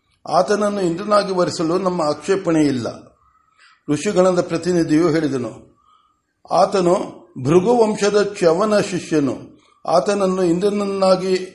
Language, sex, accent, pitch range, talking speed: Kannada, male, native, 160-200 Hz, 80 wpm